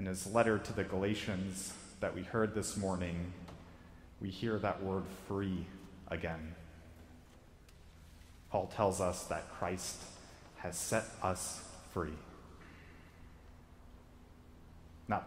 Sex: male